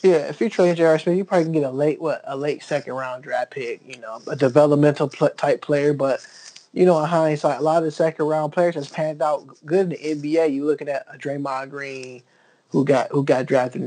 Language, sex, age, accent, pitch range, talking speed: English, male, 20-39, American, 140-160 Hz, 240 wpm